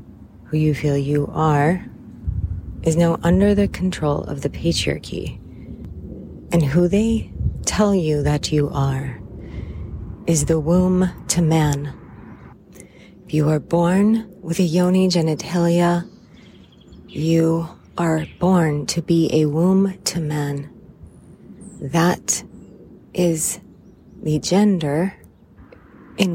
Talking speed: 105 wpm